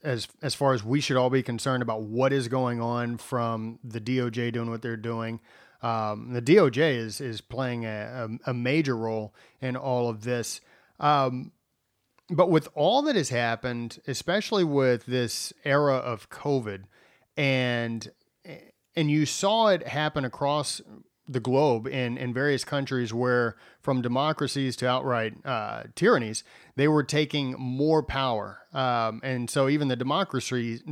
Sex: male